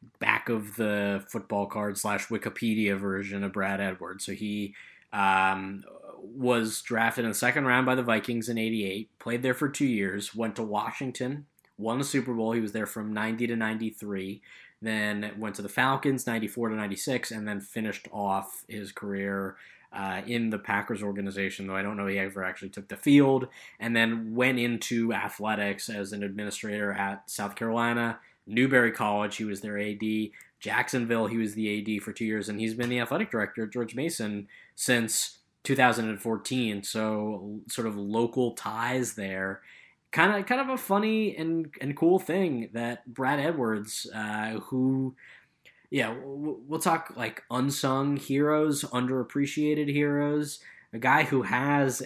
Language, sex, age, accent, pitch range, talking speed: English, male, 20-39, American, 105-125 Hz, 165 wpm